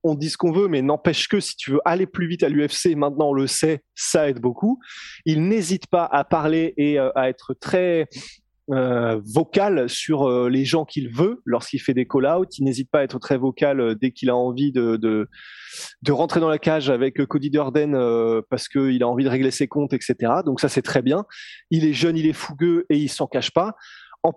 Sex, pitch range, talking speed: male, 130-165 Hz, 225 wpm